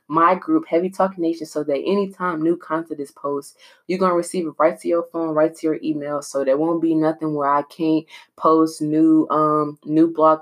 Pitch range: 145-170 Hz